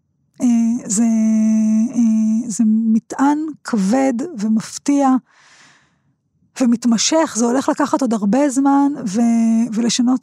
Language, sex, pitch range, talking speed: Hebrew, female, 235-300 Hz, 80 wpm